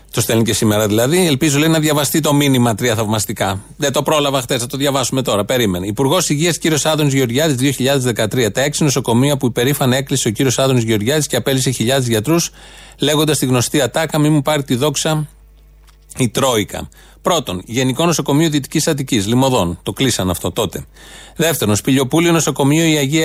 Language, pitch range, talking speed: Greek, 125-155 Hz, 175 wpm